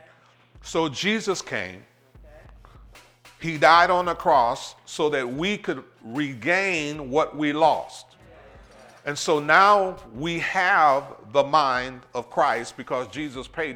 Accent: American